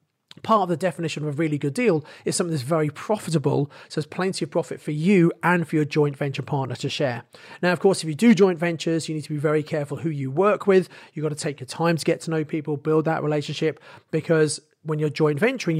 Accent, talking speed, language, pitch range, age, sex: British, 250 wpm, English, 150-175 Hz, 40-59, male